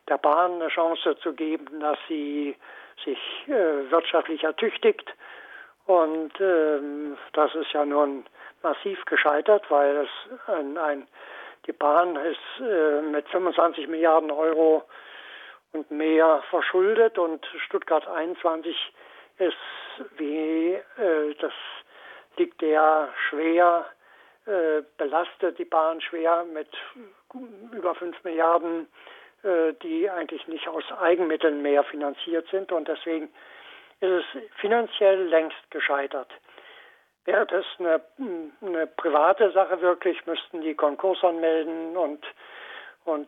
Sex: male